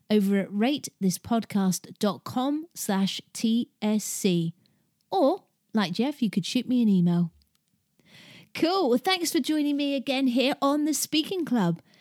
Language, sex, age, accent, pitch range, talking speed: English, female, 30-49, British, 190-250 Hz, 125 wpm